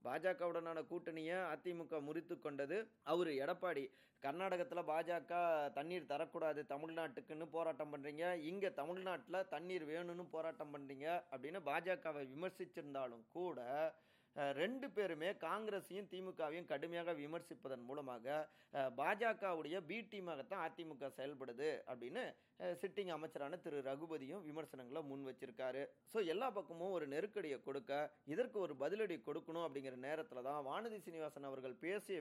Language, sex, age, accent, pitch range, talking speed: Tamil, male, 30-49, native, 135-175 Hz, 110 wpm